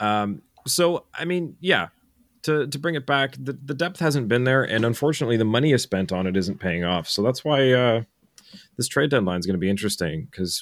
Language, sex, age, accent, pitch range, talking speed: English, male, 30-49, American, 90-140 Hz, 225 wpm